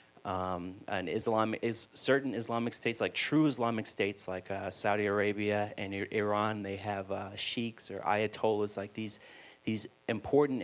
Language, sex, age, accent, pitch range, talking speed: English, male, 30-49, American, 100-110 Hz, 160 wpm